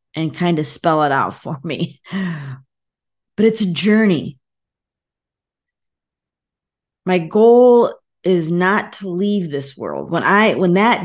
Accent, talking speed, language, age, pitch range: American, 130 wpm, English, 40-59, 155-190 Hz